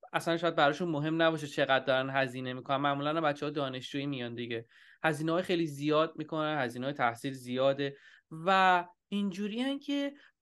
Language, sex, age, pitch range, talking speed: Persian, male, 20-39, 155-225 Hz, 150 wpm